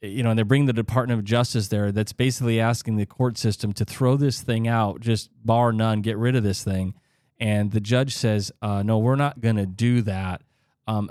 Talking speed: 225 wpm